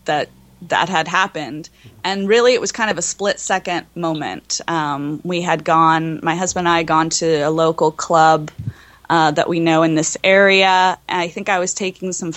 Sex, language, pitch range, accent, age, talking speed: female, English, 160-195 Hz, American, 20-39, 200 wpm